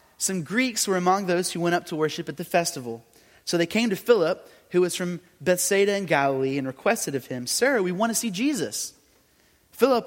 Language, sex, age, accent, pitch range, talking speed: English, male, 30-49, American, 145-200 Hz, 210 wpm